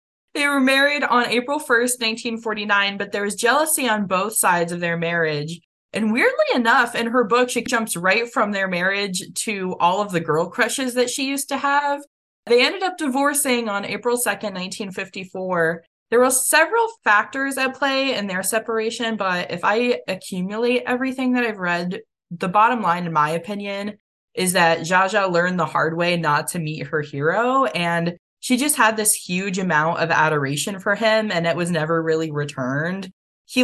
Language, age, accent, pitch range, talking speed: English, 20-39, American, 175-240 Hz, 180 wpm